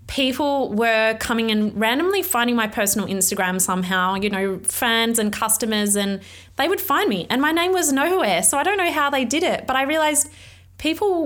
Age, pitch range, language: 20-39, 195-255 Hz, English